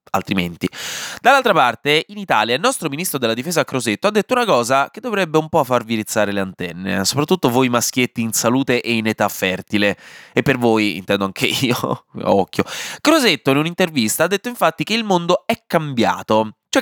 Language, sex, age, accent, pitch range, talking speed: Italian, male, 20-39, native, 110-155 Hz, 180 wpm